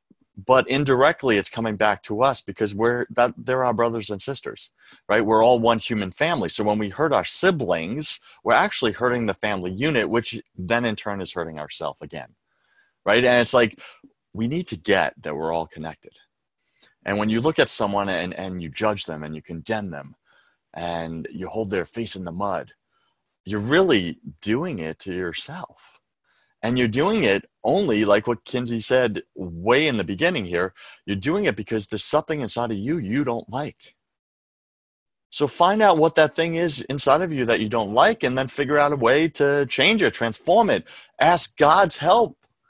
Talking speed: 190 wpm